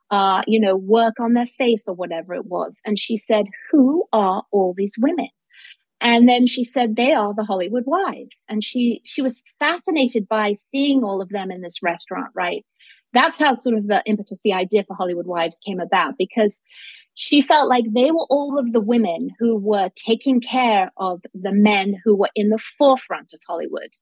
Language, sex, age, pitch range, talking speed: English, female, 30-49, 205-255 Hz, 195 wpm